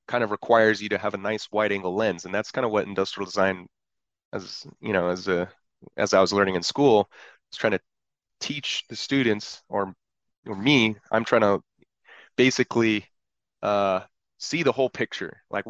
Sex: male